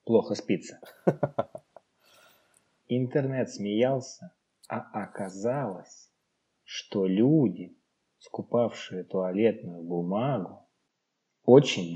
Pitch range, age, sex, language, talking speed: 95-125 Hz, 20-39, male, Russian, 60 wpm